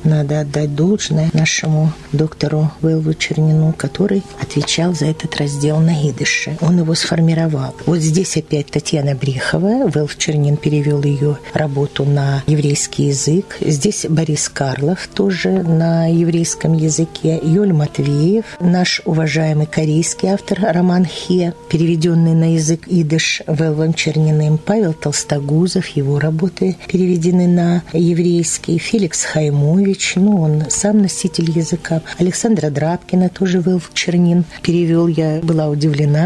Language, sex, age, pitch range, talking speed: Russian, female, 40-59, 150-180 Hz, 120 wpm